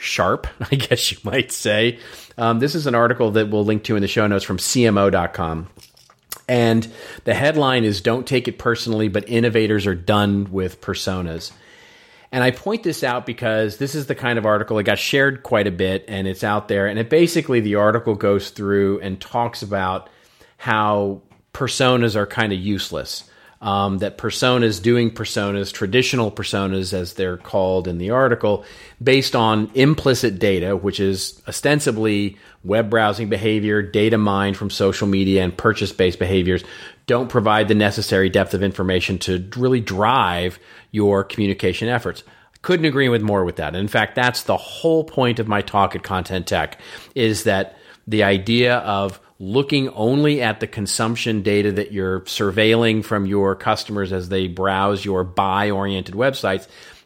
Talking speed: 170 wpm